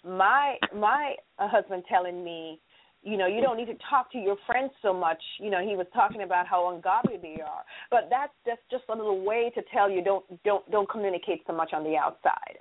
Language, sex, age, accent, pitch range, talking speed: English, female, 40-59, American, 180-245 Hz, 225 wpm